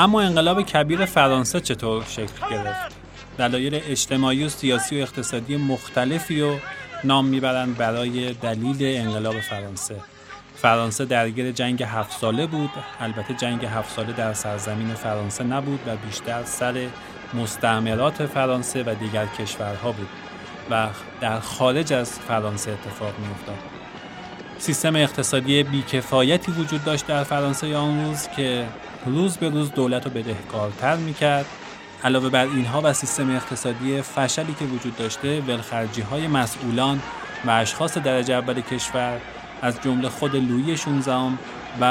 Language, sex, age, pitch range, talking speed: Persian, male, 30-49, 115-145 Hz, 135 wpm